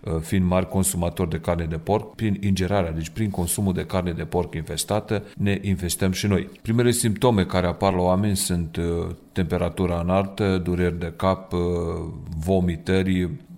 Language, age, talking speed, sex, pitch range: Romanian, 40-59, 150 wpm, male, 85-100 Hz